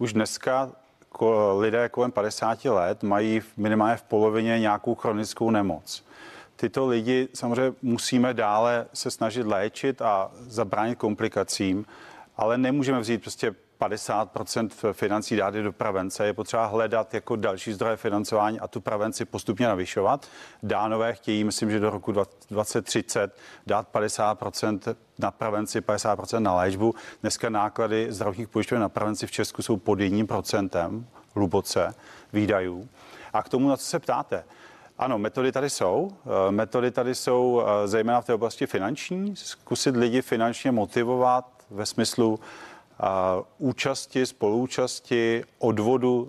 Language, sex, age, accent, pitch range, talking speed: Czech, male, 40-59, native, 105-125 Hz, 135 wpm